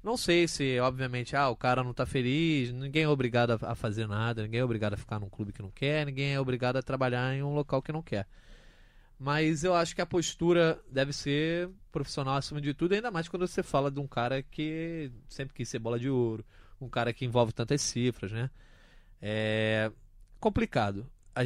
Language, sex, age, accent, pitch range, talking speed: Portuguese, male, 20-39, Brazilian, 115-145 Hz, 205 wpm